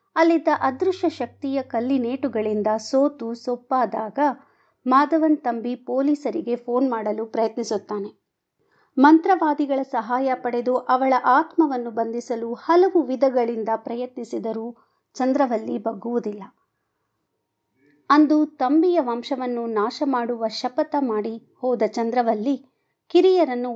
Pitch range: 230-280 Hz